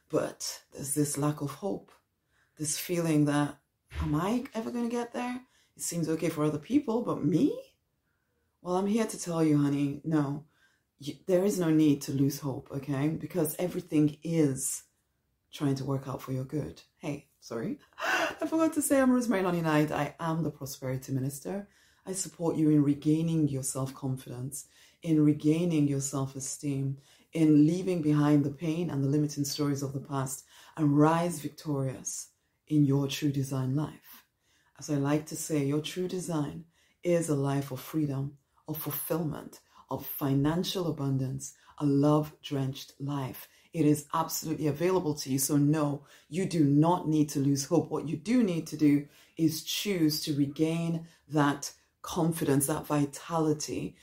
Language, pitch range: English, 140-165 Hz